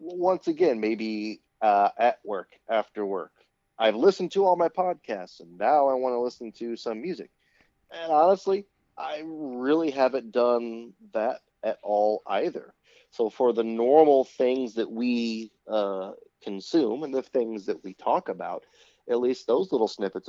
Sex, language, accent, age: male, English, American, 30-49